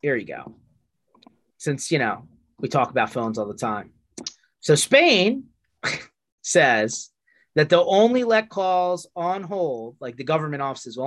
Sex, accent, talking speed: male, American, 150 wpm